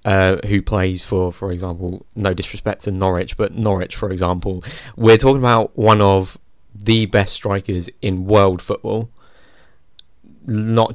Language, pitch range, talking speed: English, 90-105 Hz, 145 wpm